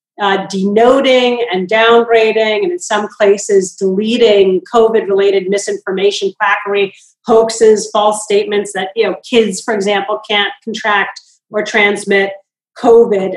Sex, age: female, 40-59